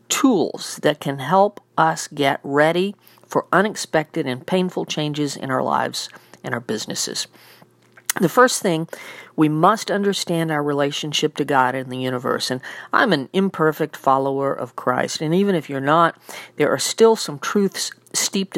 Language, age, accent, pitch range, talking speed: English, 50-69, American, 135-180 Hz, 160 wpm